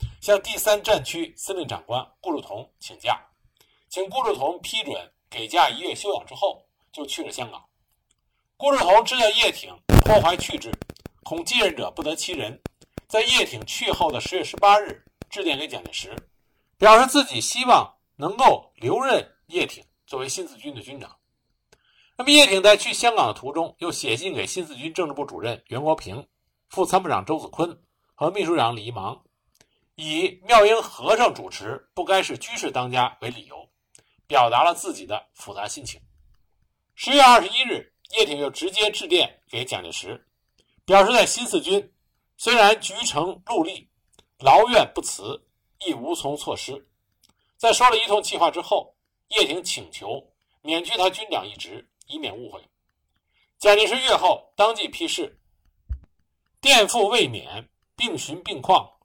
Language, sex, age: Chinese, male, 50-69